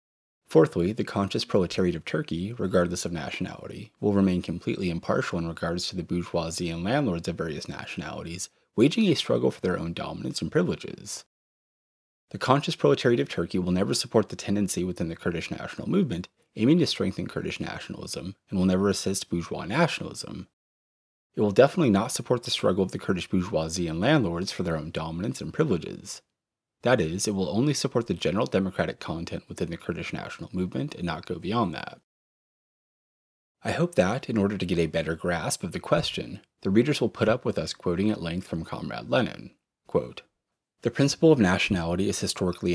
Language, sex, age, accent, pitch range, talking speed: English, male, 30-49, American, 85-105 Hz, 180 wpm